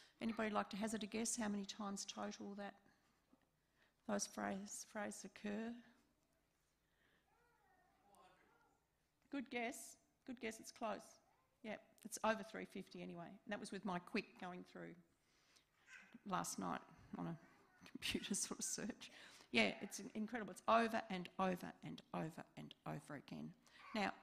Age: 40-59